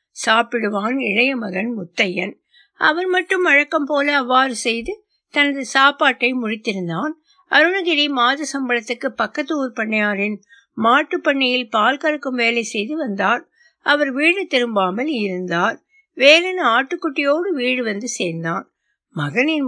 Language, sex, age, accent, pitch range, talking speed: Tamil, female, 60-79, native, 215-310 Hz, 105 wpm